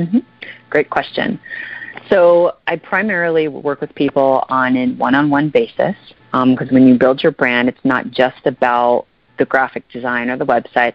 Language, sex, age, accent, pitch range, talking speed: English, female, 30-49, American, 125-145 Hz, 165 wpm